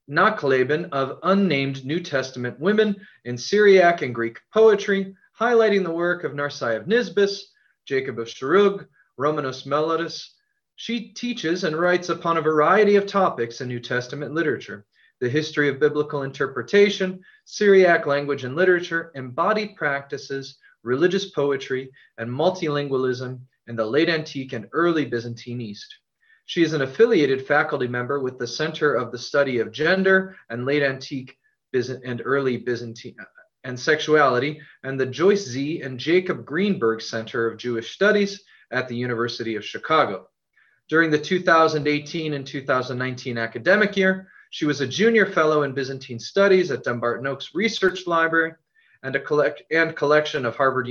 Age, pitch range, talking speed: 30-49, 130-190 Hz, 145 wpm